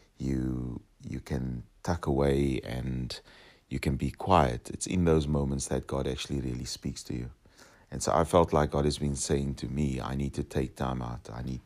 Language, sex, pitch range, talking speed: English, male, 65-75 Hz, 205 wpm